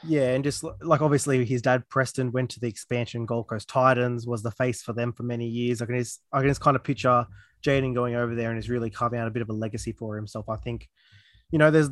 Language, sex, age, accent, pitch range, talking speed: English, male, 20-39, Australian, 120-140 Hz, 265 wpm